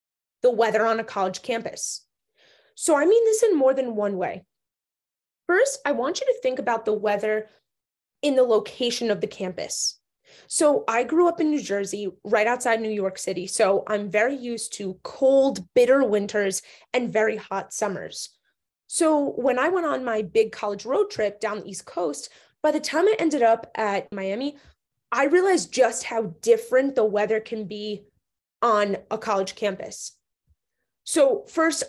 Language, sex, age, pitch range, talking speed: English, female, 20-39, 210-285 Hz, 170 wpm